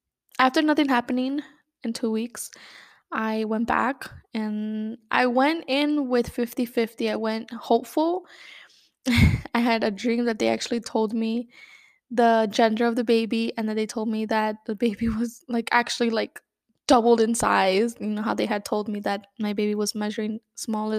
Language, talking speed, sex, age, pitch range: English, 170 wpm, female, 10-29, 220-250 Hz